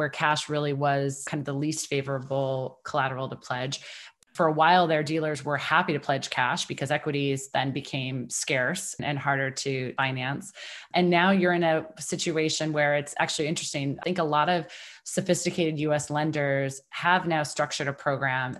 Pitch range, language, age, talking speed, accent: 140-160 Hz, English, 20-39, 175 wpm, American